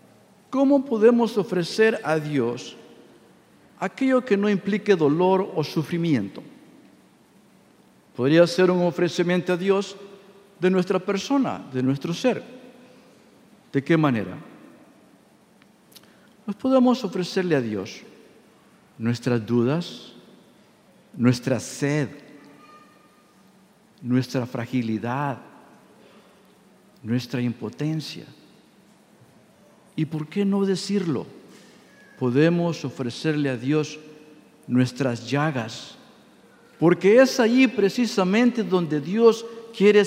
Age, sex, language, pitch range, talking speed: 50-69, male, English, 145-210 Hz, 85 wpm